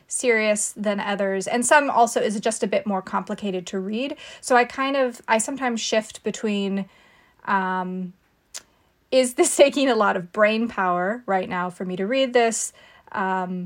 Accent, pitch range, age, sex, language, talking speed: American, 195-240 Hz, 30-49, female, English, 170 wpm